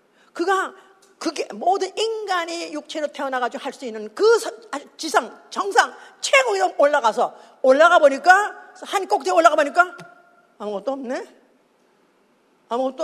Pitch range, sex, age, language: 245-355 Hz, female, 50-69, Korean